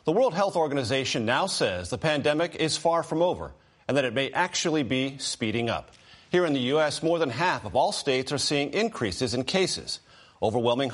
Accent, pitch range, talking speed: American, 120-160 Hz, 195 wpm